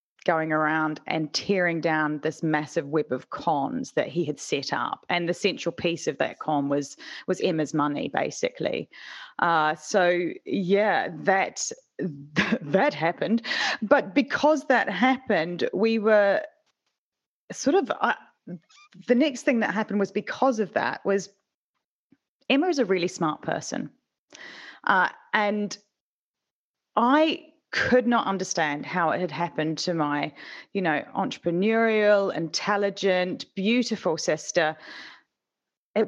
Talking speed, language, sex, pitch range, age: 130 wpm, English, female, 155-220 Hz, 30-49